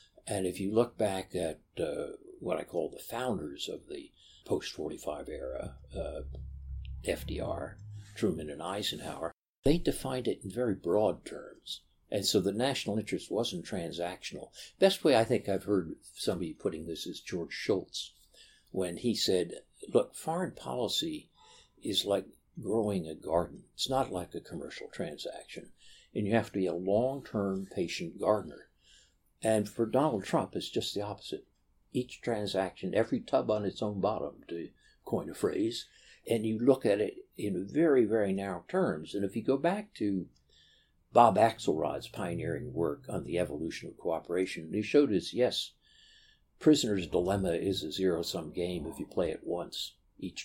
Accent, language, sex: American, English, male